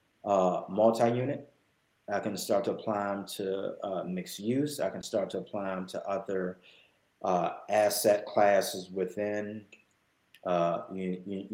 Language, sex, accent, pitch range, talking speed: English, male, American, 100-120 Hz, 130 wpm